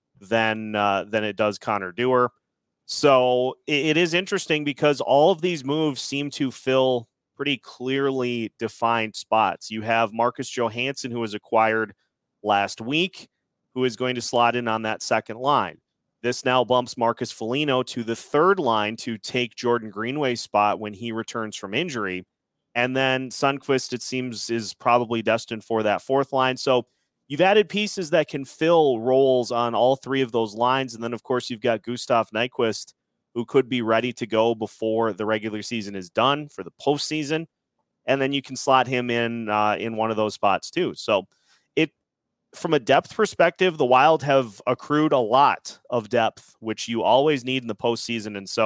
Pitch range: 110-135 Hz